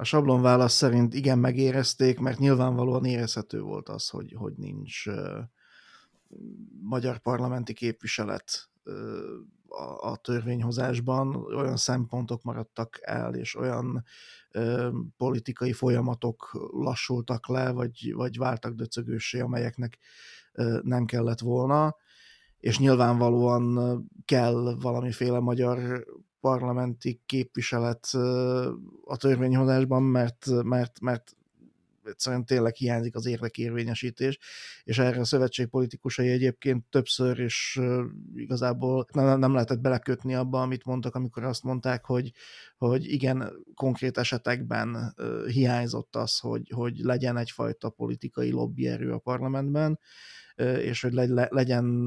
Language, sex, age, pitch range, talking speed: Hungarian, male, 30-49, 120-130 Hz, 105 wpm